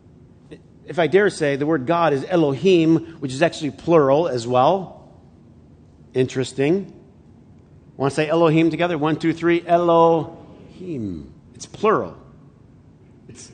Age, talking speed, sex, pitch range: 50-69, 125 wpm, male, 130-175 Hz